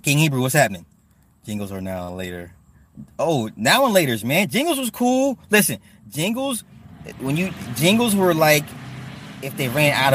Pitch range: 115-155 Hz